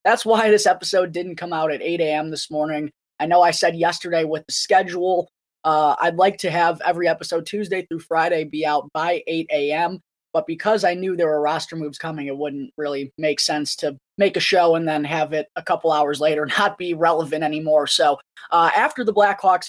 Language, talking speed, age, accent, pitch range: English, 215 wpm, 20-39, American, 155-190 Hz